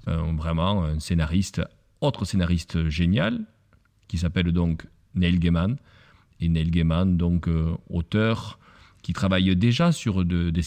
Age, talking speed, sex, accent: 40-59, 135 wpm, male, French